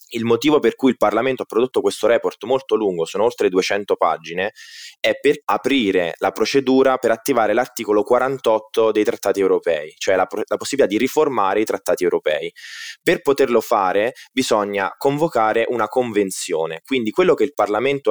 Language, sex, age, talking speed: Italian, male, 20-39, 160 wpm